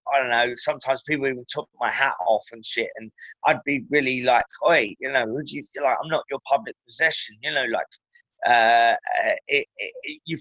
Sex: male